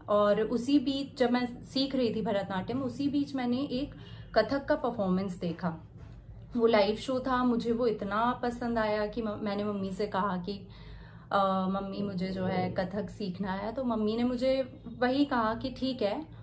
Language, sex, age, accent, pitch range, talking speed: Hindi, female, 30-49, native, 195-245 Hz, 175 wpm